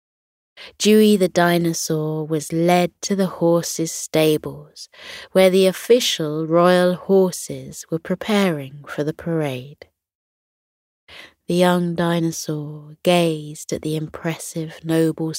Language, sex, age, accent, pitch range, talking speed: English, female, 20-39, British, 150-190 Hz, 105 wpm